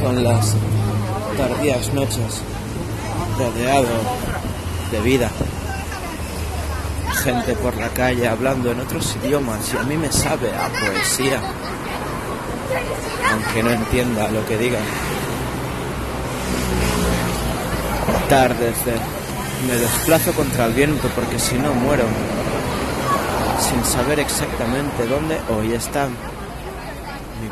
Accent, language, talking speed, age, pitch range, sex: Spanish, Spanish, 100 wpm, 30-49, 105-130 Hz, male